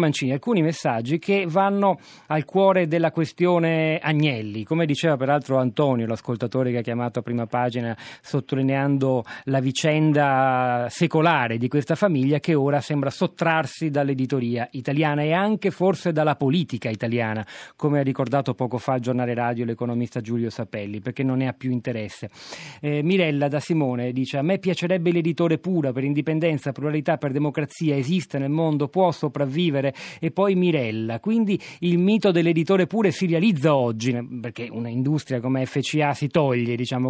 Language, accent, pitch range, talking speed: Italian, native, 130-170 Hz, 155 wpm